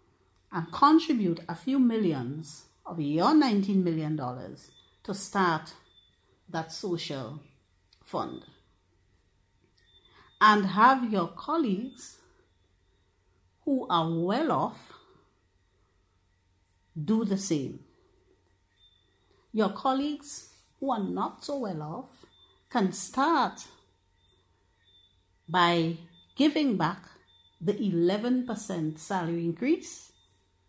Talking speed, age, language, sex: 80 wpm, 50-69, English, female